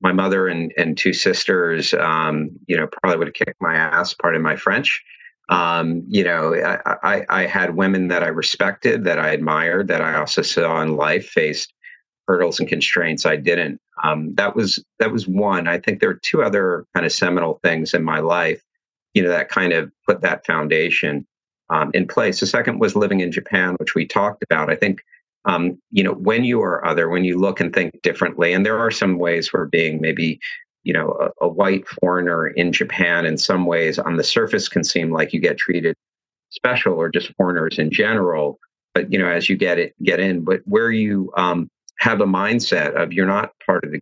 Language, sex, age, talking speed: English, male, 50-69, 215 wpm